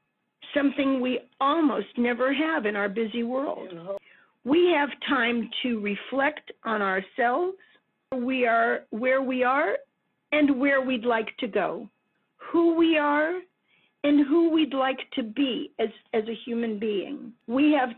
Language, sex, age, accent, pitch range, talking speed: English, female, 50-69, American, 235-295 Hz, 145 wpm